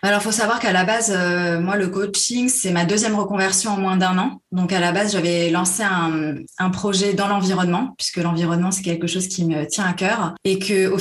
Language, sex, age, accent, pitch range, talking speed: French, female, 20-39, French, 175-205 Hz, 230 wpm